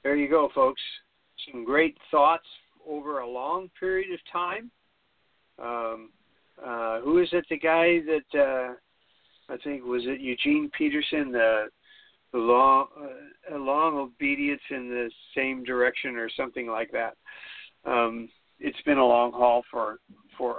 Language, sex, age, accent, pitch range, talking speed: English, male, 60-79, American, 120-165 Hz, 145 wpm